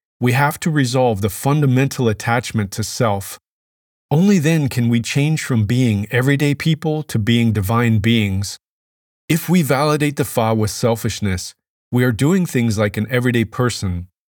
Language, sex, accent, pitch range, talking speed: English, male, American, 105-135 Hz, 155 wpm